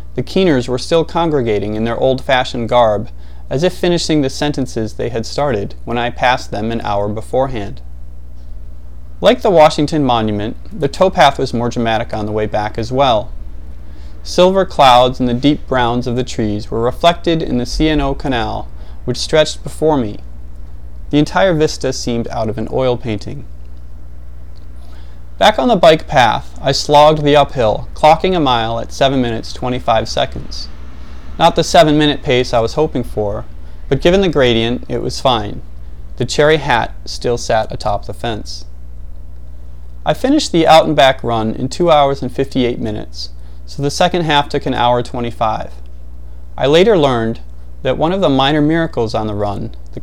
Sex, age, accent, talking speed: male, 30-49, American, 170 wpm